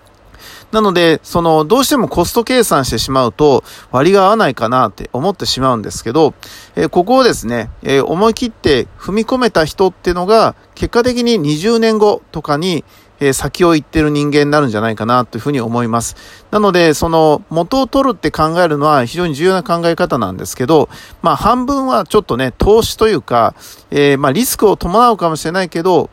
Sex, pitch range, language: male, 130-195 Hz, Japanese